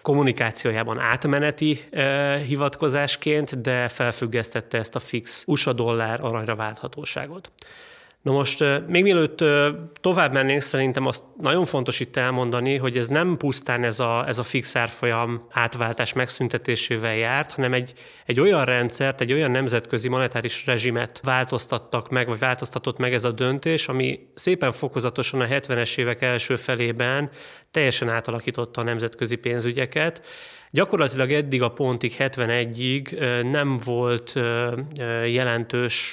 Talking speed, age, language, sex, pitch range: 125 wpm, 30-49, Hungarian, male, 120-140 Hz